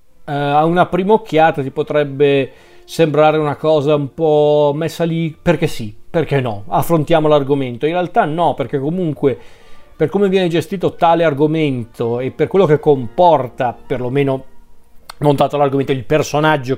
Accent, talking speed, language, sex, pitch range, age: native, 150 wpm, Italian, male, 130-155 Hz, 40-59